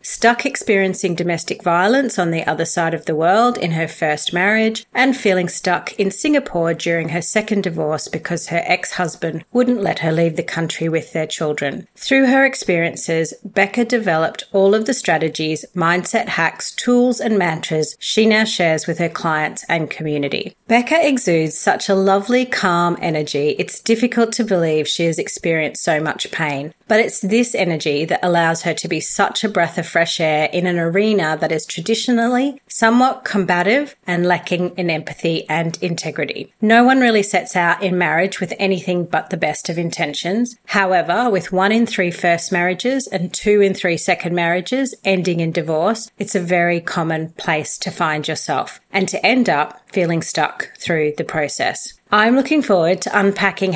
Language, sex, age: English, female, 40-59